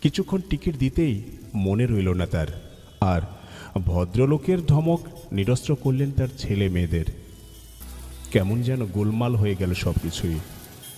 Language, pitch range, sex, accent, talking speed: Bengali, 90-125 Hz, male, native, 120 wpm